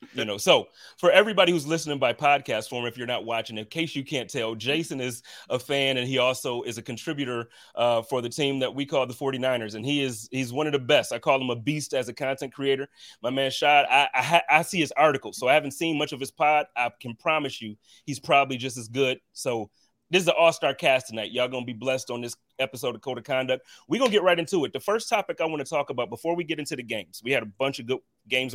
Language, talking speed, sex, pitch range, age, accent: English, 275 wpm, male, 120-150 Hz, 30-49, American